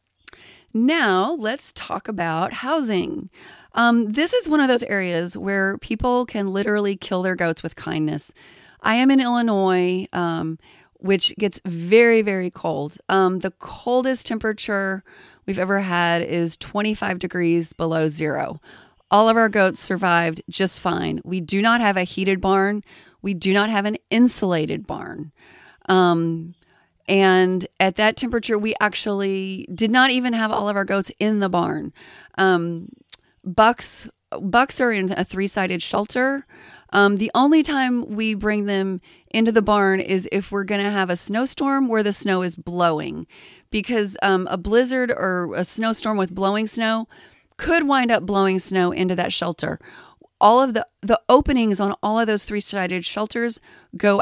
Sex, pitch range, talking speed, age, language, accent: female, 185-225 Hz, 155 wpm, 30-49, English, American